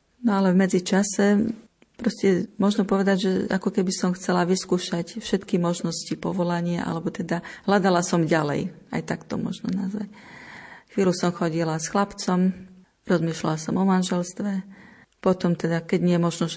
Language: Slovak